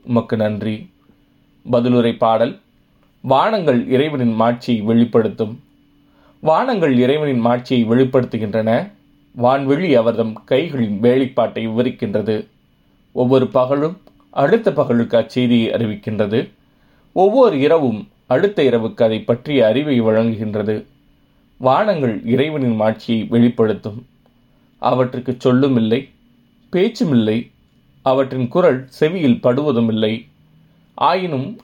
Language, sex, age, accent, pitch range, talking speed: Tamil, male, 30-49, native, 110-130 Hz, 85 wpm